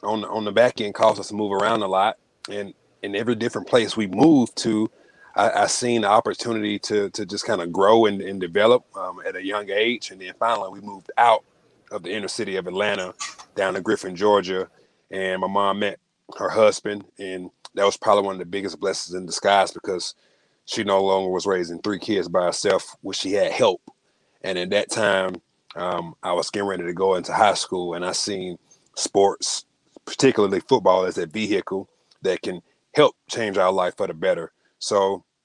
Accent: American